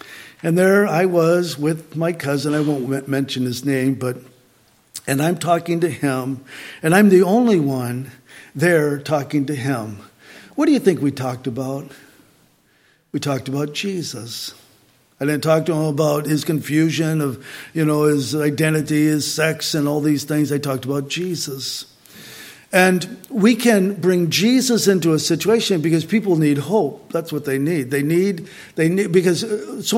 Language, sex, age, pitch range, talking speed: English, male, 50-69, 145-185 Hz, 170 wpm